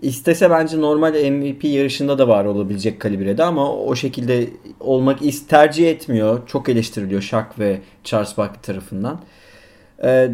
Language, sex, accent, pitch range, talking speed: Turkish, male, native, 120-155 Hz, 135 wpm